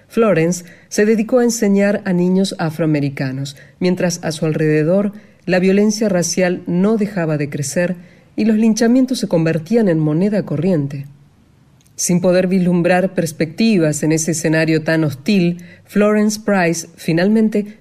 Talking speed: 130 wpm